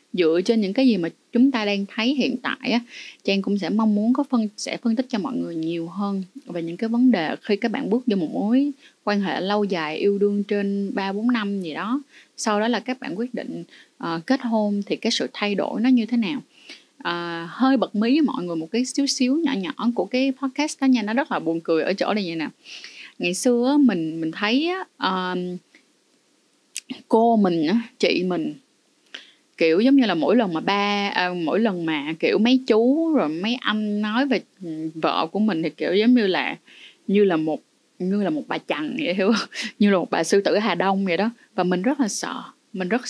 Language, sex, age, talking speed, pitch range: Vietnamese, female, 20-39, 230 wpm, 185-255 Hz